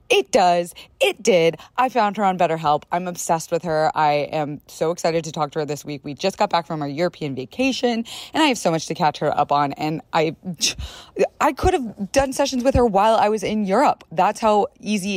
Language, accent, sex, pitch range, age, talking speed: English, American, female, 160-230 Hz, 20-39, 230 wpm